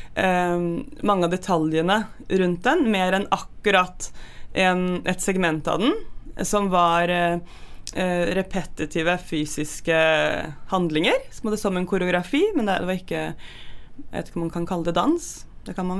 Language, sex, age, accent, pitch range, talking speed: English, female, 20-39, Swedish, 170-210 Hz, 155 wpm